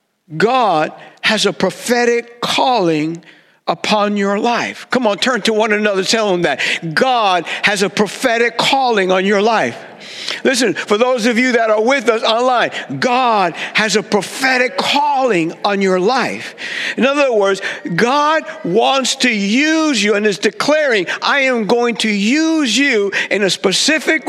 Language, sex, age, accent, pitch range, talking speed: English, male, 60-79, American, 185-250 Hz, 160 wpm